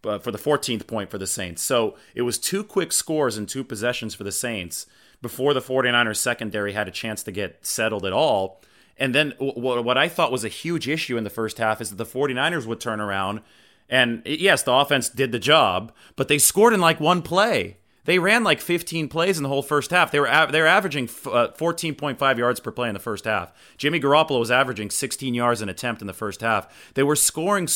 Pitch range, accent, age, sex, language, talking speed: 110-140 Hz, American, 30-49, male, English, 230 wpm